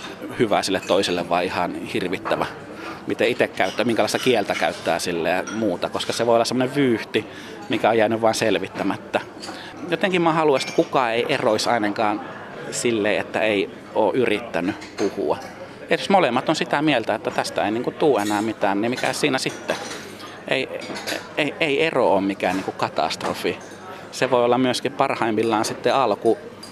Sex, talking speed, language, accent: male, 160 wpm, Finnish, native